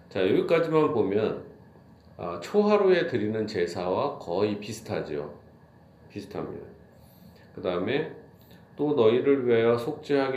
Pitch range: 100-135 Hz